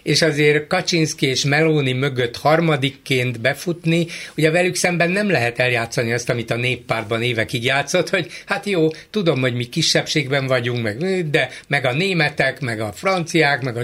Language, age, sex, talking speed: Hungarian, 60-79, male, 160 wpm